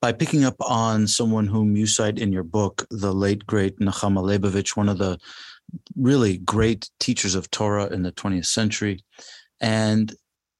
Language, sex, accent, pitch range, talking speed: English, male, American, 100-120 Hz, 165 wpm